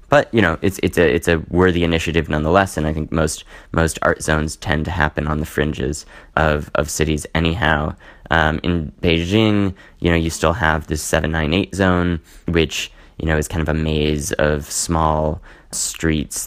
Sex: male